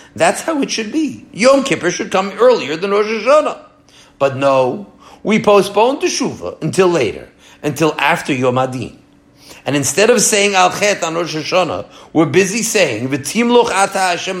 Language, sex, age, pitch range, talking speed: English, male, 50-69, 130-200 Hz, 155 wpm